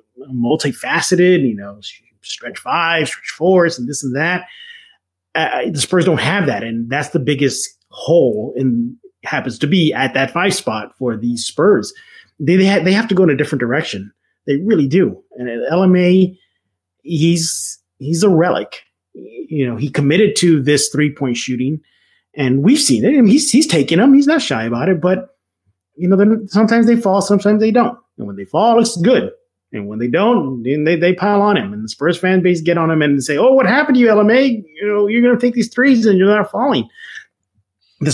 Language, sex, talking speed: English, male, 210 wpm